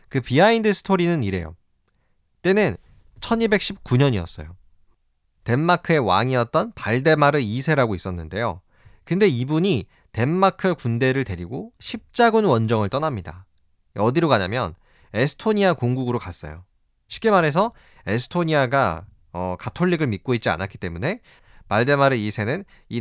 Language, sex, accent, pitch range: Korean, male, native, 105-170 Hz